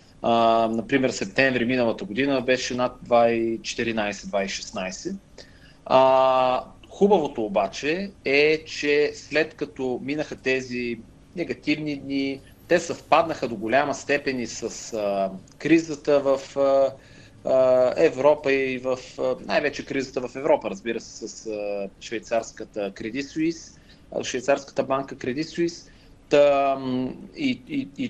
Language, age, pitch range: Bulgarian, 30-49, 115-150 Hz